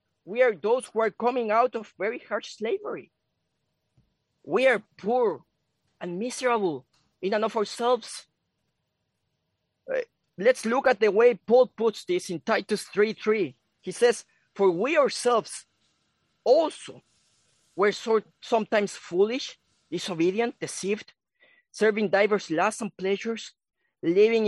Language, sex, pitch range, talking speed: English, male, 205-260 Hz, 125 wpm